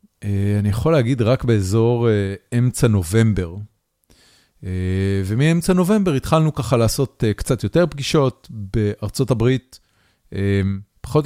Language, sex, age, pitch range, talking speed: Hebrew, male, 40-59, 100-125 Hz, 95 wpm